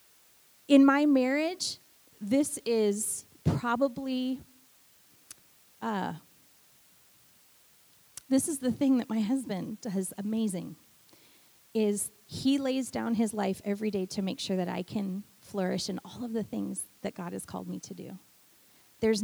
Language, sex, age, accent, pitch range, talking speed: English, female, 30-49, American, 190-230 Hz, 135 wpm